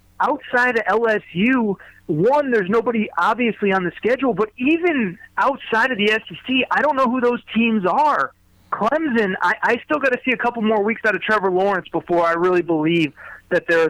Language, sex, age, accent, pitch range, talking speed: English, male, 30-49, American, 165-220 Hz, 190 wpm